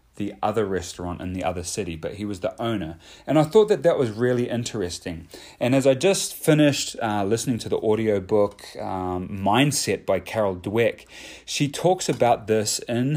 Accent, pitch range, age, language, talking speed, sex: Australian, 100-130 Hz, 30-49, English, 185 wpm, male